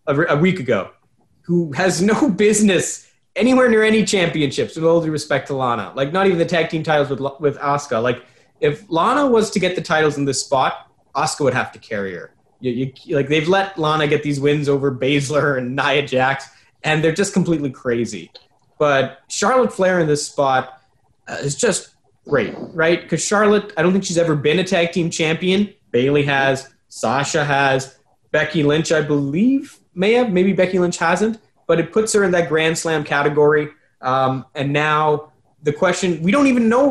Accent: American